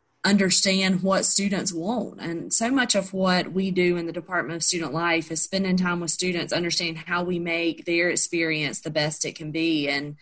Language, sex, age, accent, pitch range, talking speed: English, female, 20-39, American, 160-185 Hz, 200 wpm